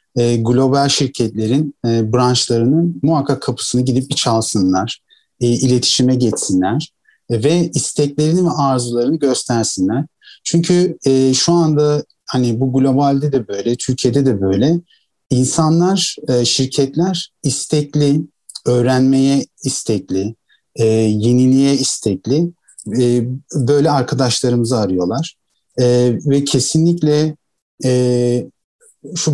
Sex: male